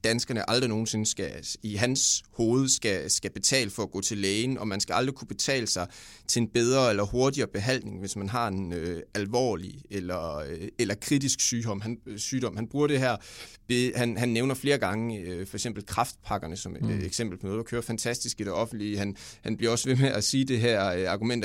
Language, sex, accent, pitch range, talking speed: English, male, Danish, 105-135 Hz, 215 wpm